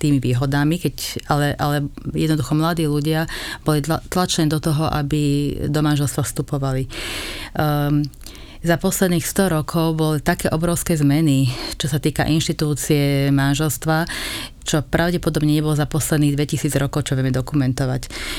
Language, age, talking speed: Slovak, 30-49, 130 wpm